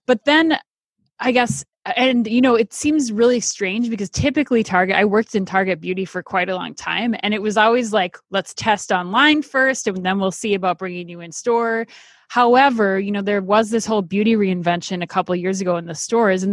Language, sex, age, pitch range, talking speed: English, female, 20-39, 185-225 Hz, 220 wpm